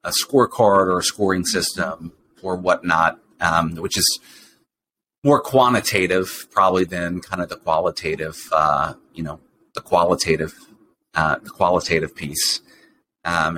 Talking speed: 130 wpm